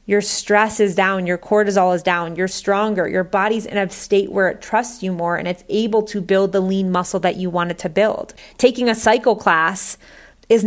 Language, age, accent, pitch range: English, 30-49, American, 180-215 Hz